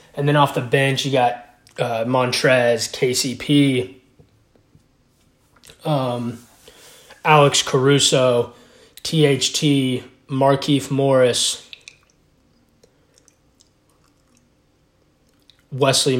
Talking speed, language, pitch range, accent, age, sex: 65 wpm, English, 135-175 Hz, American, 20-39, male